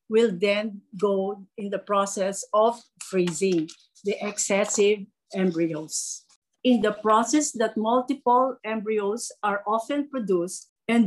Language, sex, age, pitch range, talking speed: English, female, 50-69, 200-255 Hz, 115 wpm